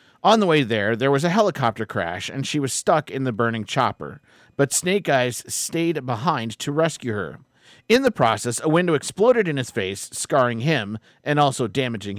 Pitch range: 115-165 Hz